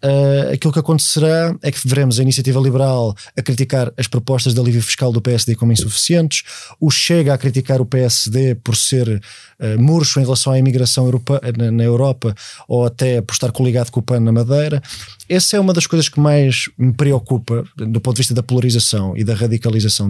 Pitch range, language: 120-145 Hz, Portuguese